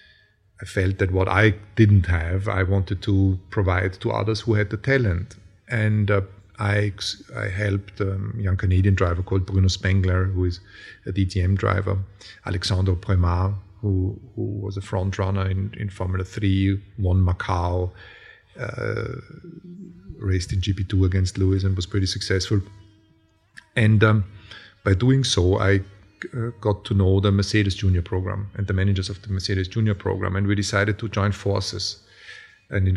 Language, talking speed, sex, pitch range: English, 160 wpm, male, 95-110 Hz